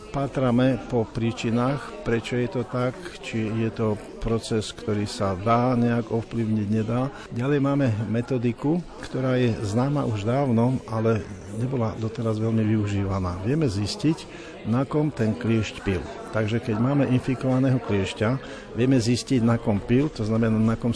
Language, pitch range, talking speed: Slovak, 105-125 Hz, 145 wpm